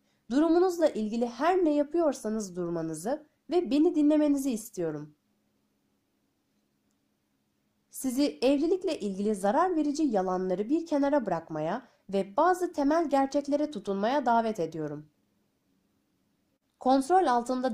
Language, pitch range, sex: Turkish, 190-295 Hz, female